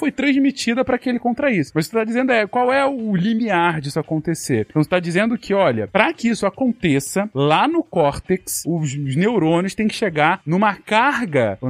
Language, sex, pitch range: Portuguese, male, 175-245 Hz